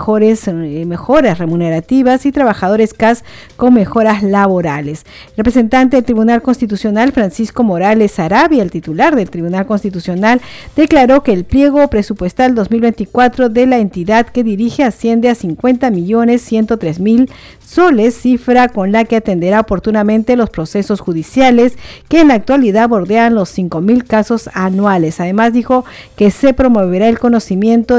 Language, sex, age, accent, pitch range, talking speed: Spanish, female, 50-69, American, 200-245 Hz, 140 wpm